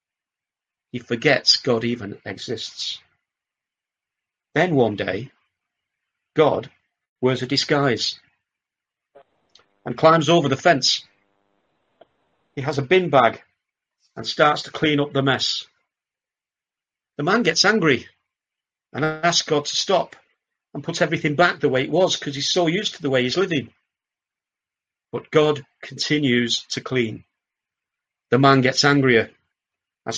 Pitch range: 120-155 Hz